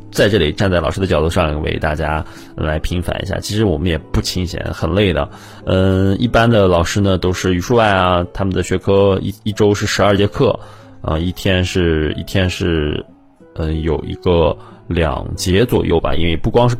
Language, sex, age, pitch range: Chinese, male, 20-39, 85-105 Hz